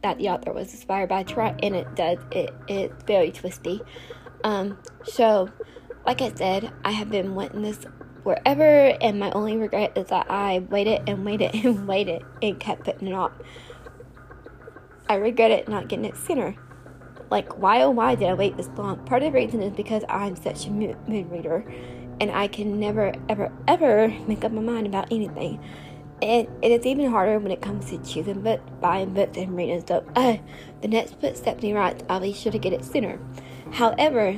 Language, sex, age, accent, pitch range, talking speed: English, female, 20-39, American, 195-230 Hz, 195 wpm